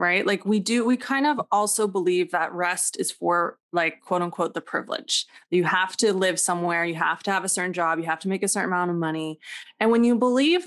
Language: English